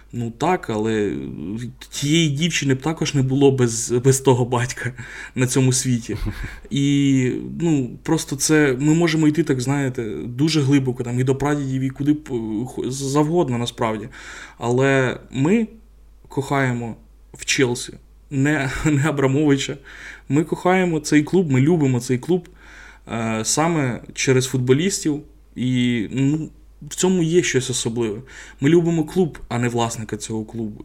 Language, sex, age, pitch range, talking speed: Ukrainian, male, 20-39, 120-150 Hz, 135 wpm